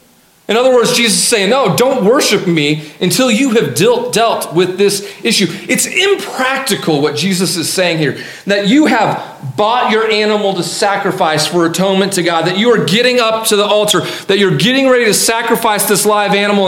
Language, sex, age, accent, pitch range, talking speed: English, male, 40-59, American, 175-210 Hz, 190 wpm